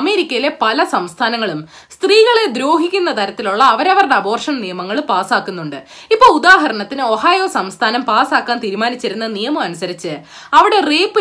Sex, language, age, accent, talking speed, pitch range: female, Malayalam, 20-39, native, 100 wpm, 225-355 Hz